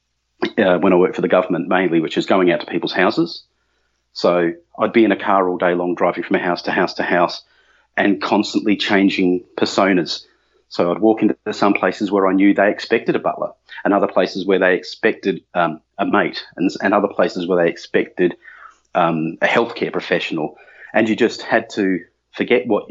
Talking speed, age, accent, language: 200 wpm, 30-49, Australian, English